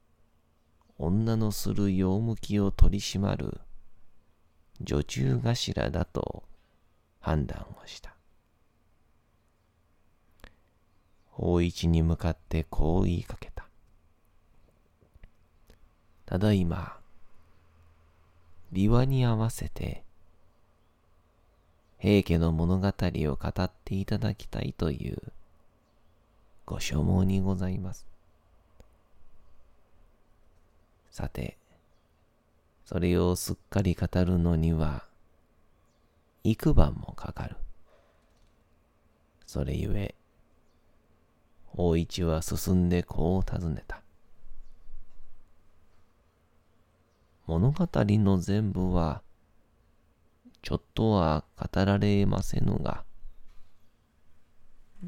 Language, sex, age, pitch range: Japanese, male, 40-59, 80-100 Hz